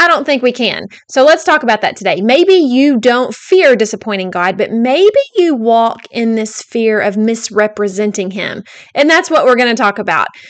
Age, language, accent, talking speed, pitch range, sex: 30-49, English, American, 200 wpm, 215-270 Hz, female